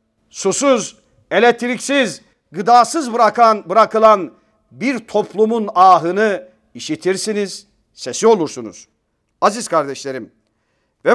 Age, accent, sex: 50-69, native, male